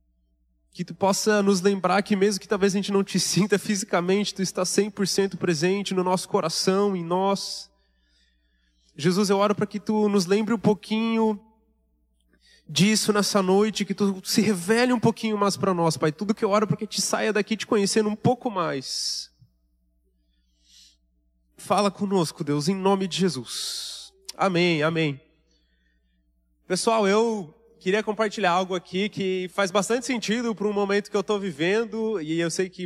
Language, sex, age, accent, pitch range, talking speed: Portuguese, male, 30-49, Brazilian, 175-215 Hz, 165 wpm